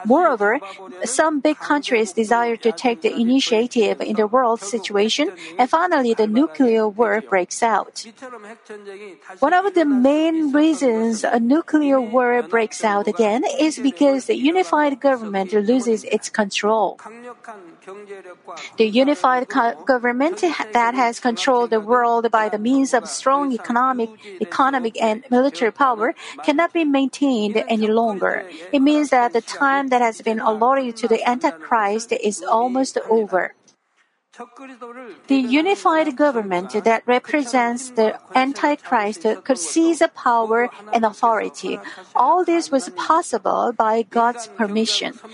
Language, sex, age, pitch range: Korean, female, 50-69, 225-275 Hz